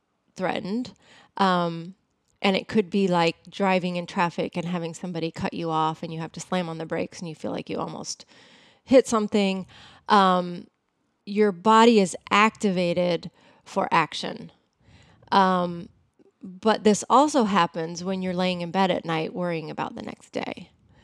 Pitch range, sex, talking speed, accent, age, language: 175-210 Hz, female, 160 wpm, American, 30-49, English